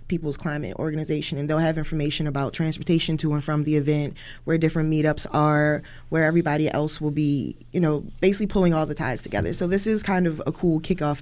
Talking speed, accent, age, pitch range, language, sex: 210 wpm, American, 20-39, 155-185 Hz, English, female